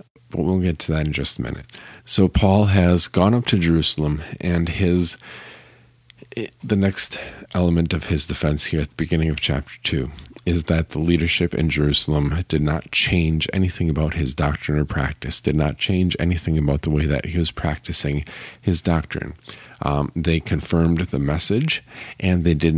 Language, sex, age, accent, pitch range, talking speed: English, male, 50-69, American, 75-90 Hz, 175 wpm